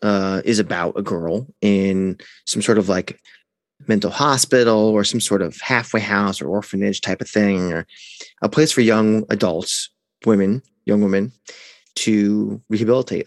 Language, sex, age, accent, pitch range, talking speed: English, male, 30-49, American, 100-115 Hz, 155 wpm